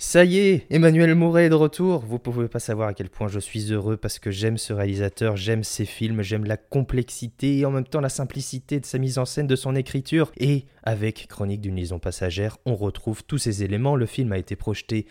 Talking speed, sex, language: 235 wpm, male, French